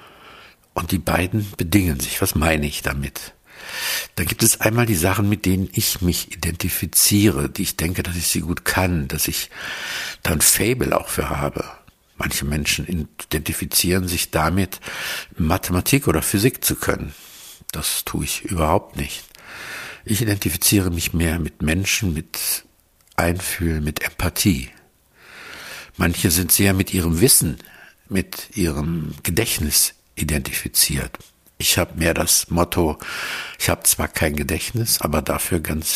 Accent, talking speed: German, 140 wpm